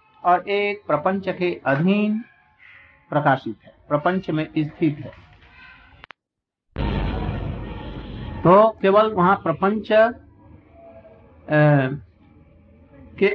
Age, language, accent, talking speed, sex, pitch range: 60-79, Hindi, native, 75 wpm, male, 150-215 Hz